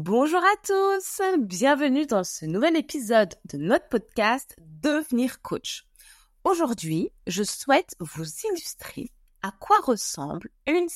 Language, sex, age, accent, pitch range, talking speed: French, female, 20-39, French, 180-270 Hz, 130 wpm